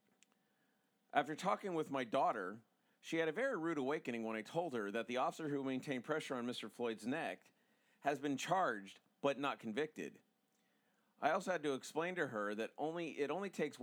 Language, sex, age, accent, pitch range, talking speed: English, male, 50-69, American, 120-195 Hz, 185 wpm